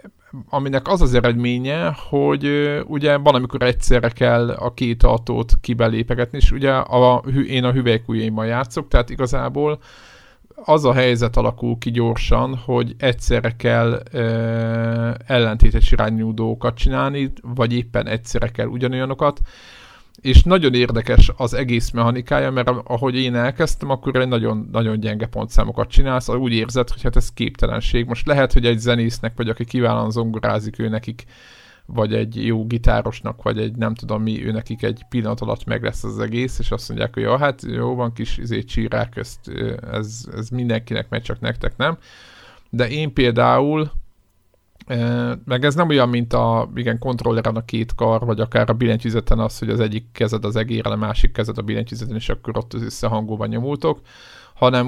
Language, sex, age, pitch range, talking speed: Hungarian, male, 50-69, 115-125 Hz, 160 wpm